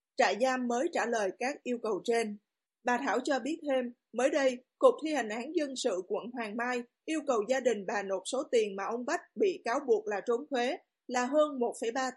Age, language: 20-39, Vietnamese